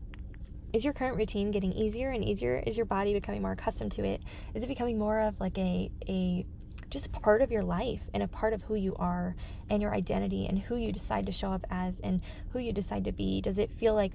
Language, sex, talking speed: English, female, 240 wpm